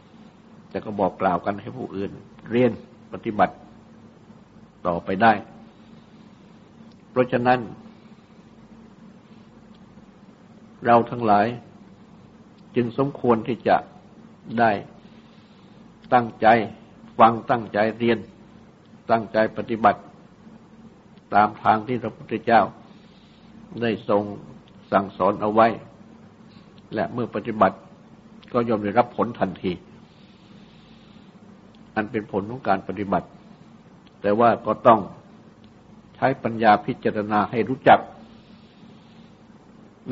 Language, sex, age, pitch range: Thai, male, 60-79, 105-120 Hz